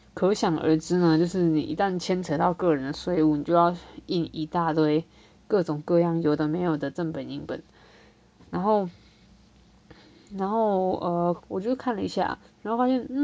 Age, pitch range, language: 20-39, 165-225 Hz, Chinese